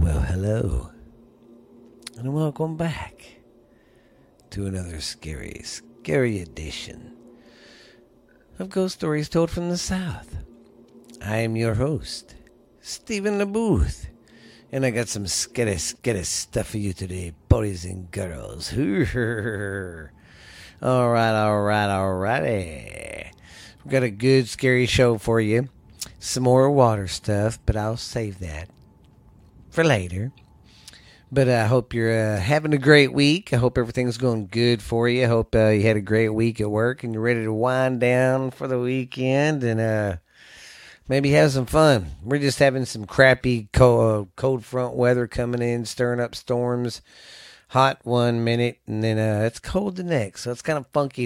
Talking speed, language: 150 wpm, English